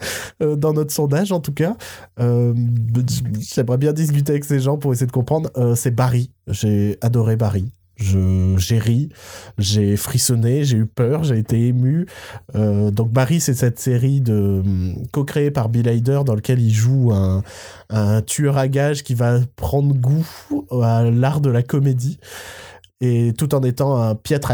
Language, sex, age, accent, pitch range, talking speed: French, male, 20-39, French, 115-145 Hz, 170 wpm